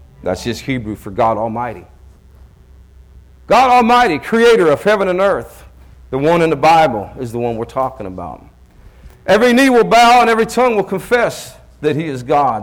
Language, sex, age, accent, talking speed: English, male, 50-69, American, 175 wpm